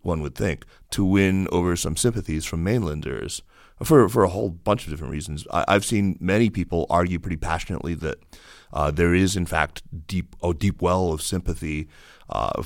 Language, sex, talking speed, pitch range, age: English, male, 190 wpm, 80-90 Hz, 30-49